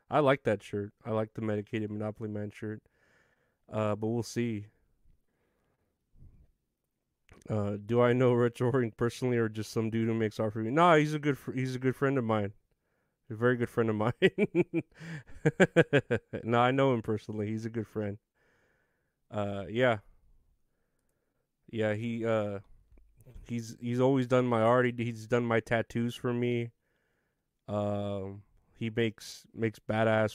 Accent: American